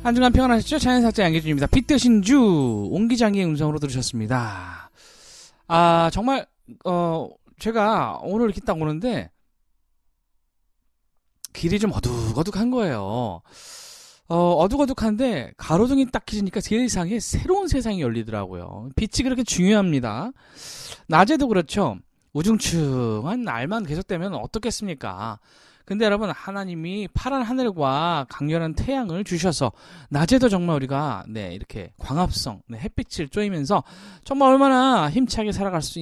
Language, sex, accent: Korean, male, native